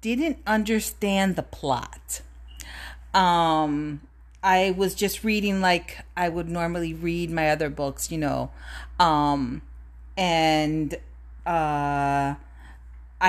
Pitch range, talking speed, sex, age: 150-195 Hz, 100 wpm, female, 40-59